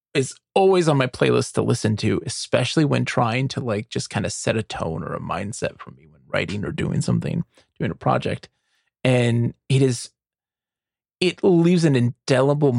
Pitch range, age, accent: 115-155 Hz, 30-49, American